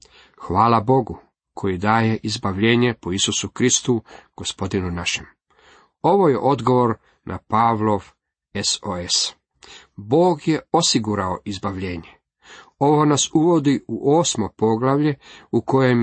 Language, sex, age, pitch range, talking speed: Croatian, male, 40-59, 95-125 Hz, 105 wpm